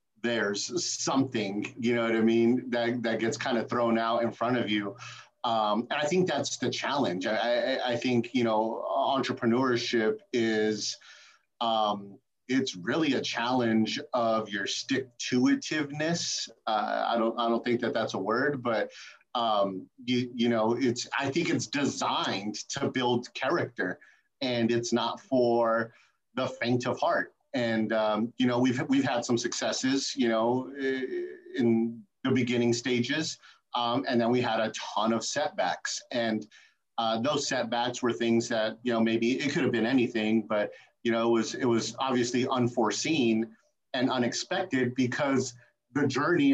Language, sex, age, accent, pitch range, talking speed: English, male, 30-49, American, 115-130 Hz, 160 wpm